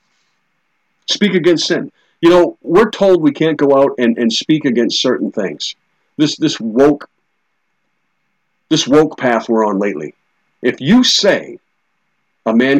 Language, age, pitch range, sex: English, 50-69, 115-155 Hz, male